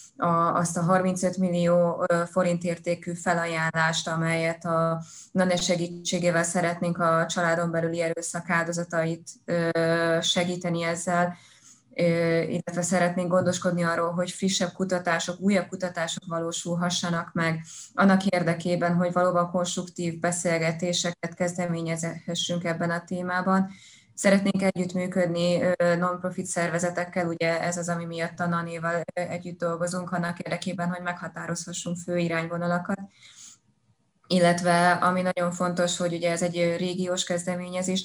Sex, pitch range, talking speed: female, 165-180 Hz, 110 wpm